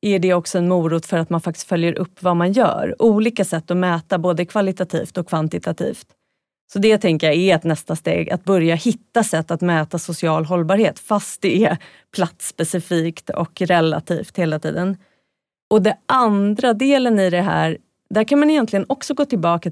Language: Swedish